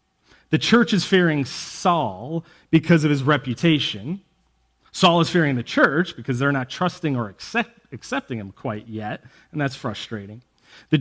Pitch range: 125-180 Hz